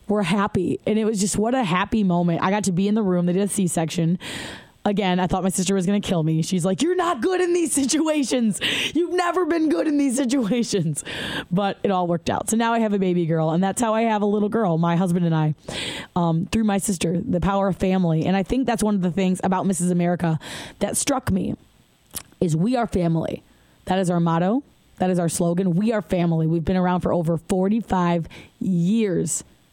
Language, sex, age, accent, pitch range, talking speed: English, female, 20-39, American, 180-225 Hz, 230 wpm